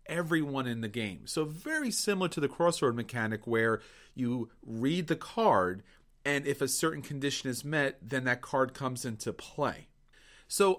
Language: English